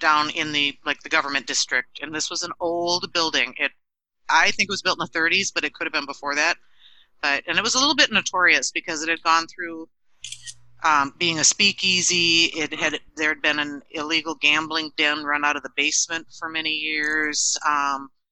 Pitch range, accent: 145-170 Hz, American